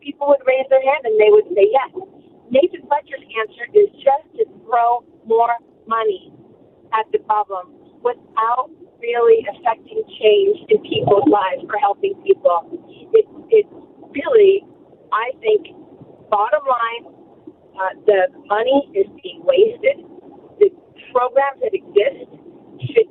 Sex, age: female, 40-59